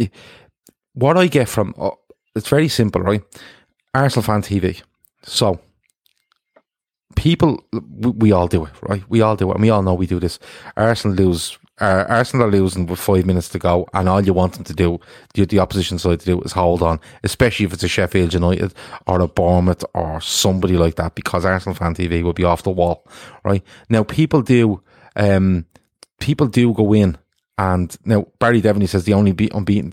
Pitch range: 90-115 Hz